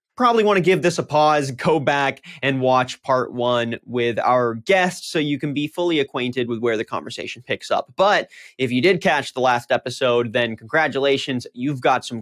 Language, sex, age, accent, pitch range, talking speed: English, male, 30-49, American, 125-165 Hz, 200 wpm